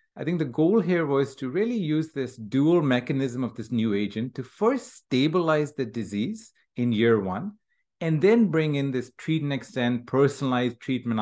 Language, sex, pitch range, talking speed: English, male, 115-160 Hz, 180 wpm